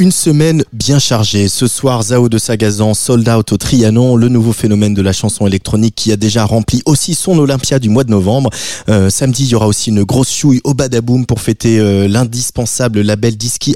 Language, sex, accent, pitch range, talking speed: French, male, French, 105-130 Hz, 210 wpm